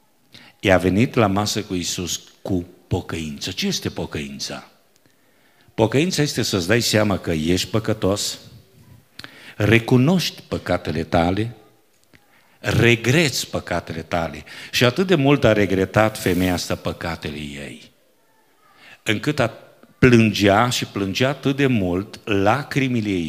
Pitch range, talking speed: 90-130 Hz, 115 wpm